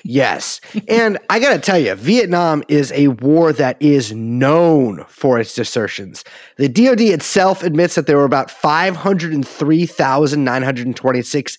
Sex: male